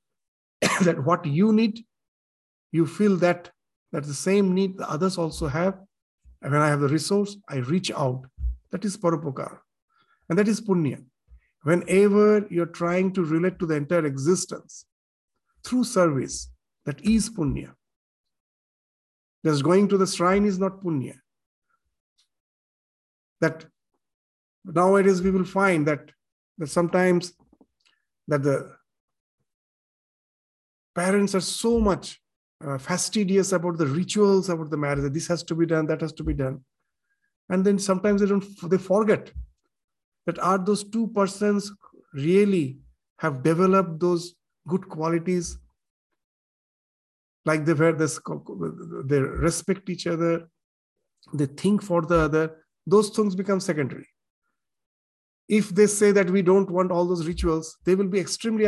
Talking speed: 140 wpm